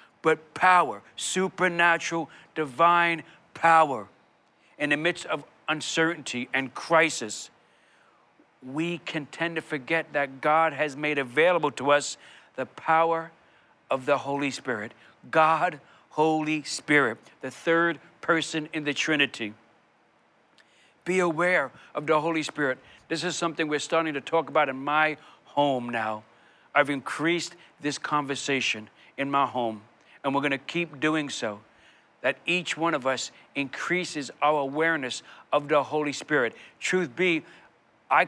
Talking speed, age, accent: 135 wpm, 60-79, American